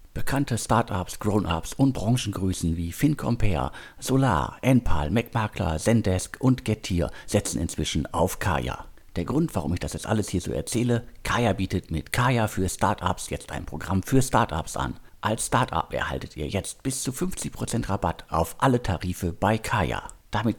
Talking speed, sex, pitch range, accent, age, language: 155 wpm, male, 80-105 Hz, German, 50-69, German